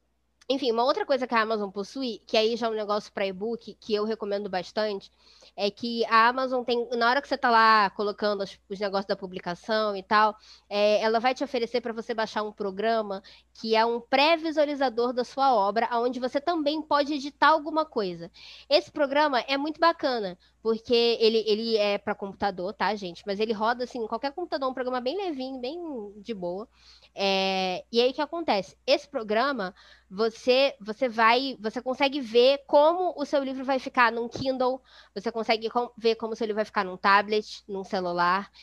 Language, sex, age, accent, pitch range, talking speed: Portuguese, female, 10-29, Brazilian, 200-255 Hz, 200 wpm